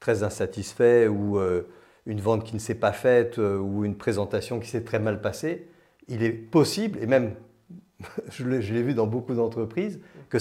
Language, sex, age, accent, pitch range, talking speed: French, male, 50-69, French, 105-140 Hz, 185 wpm